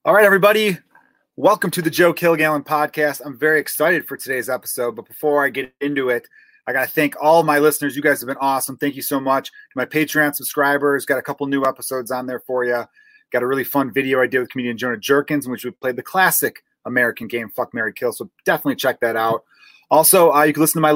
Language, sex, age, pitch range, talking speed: English, male, 30-49, 125-160 Hz, 240 wpm